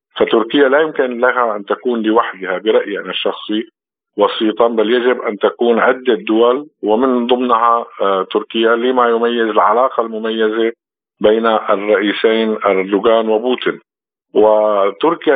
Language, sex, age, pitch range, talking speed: Arabic, male, 50-69, 105-120 Hz, 110 wpm